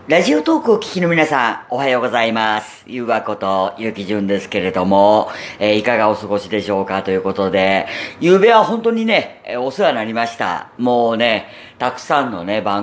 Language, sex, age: Japanese, female, 40-59